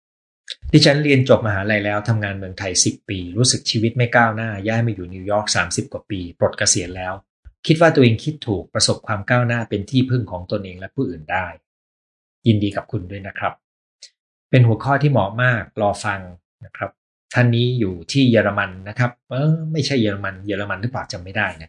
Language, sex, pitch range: Thai, male, 100-130 Hz